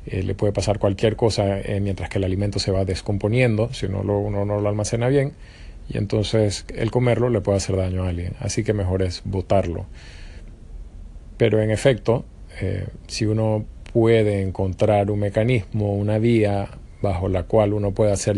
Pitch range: 95-115 Hz